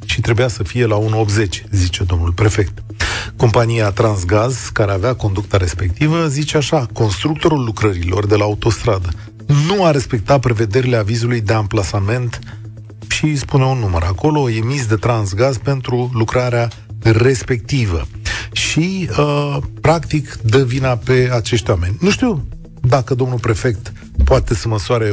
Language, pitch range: Romanian, 105-125 Hz